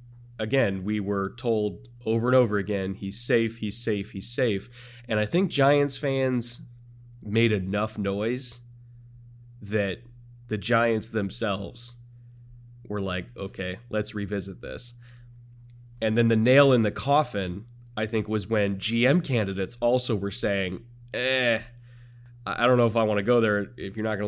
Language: English